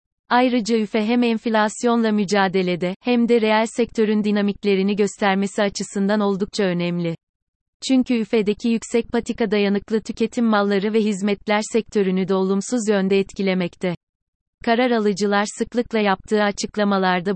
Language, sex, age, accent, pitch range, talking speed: Turkish, female, 30-49, native, 195-220 Hz, 115 wpm